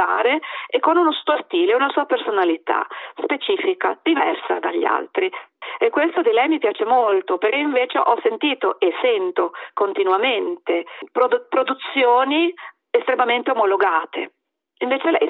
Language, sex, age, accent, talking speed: Italian, female, 40-59, native, 120 wpm